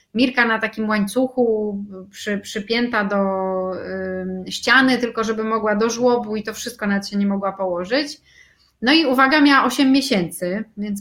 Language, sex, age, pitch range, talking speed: Polish, female, 30-49, 205-250 Hz, 160 wpm